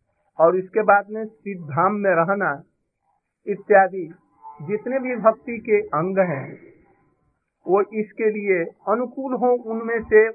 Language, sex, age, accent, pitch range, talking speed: Hindi, male, 50-69, native, 160-225 Hz, 120 wpm